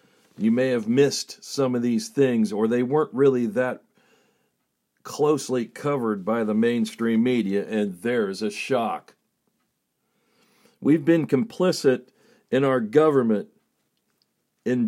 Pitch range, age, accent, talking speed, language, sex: 110-150 Hz, 50-69, American, 120 wpm, English, male